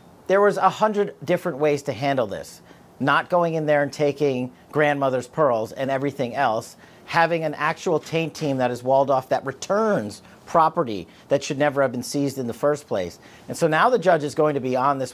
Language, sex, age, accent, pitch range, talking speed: English, male, 40-59, American, 130-155 Hz, 210 wpm